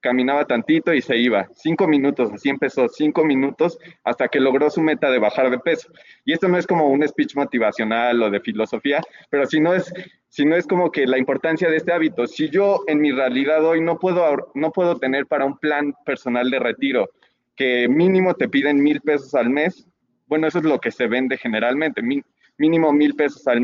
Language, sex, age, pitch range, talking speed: Spanish, male, 20-39, 130-160 Hz, 210 wpm